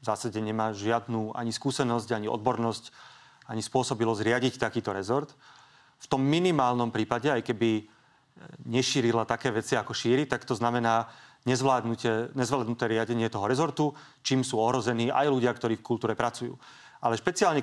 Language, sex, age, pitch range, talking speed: Slovak, male, 30-49, 115-135 Hz, 145 wpm